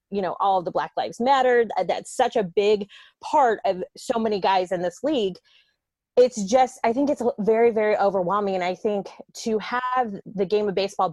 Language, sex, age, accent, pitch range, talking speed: English, female, 20-39, American, 190-230 Hz, 200 wpm